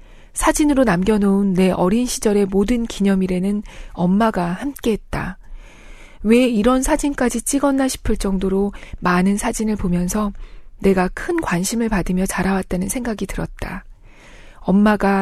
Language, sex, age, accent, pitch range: Korean, female, 40-59, native, 185-235 Hz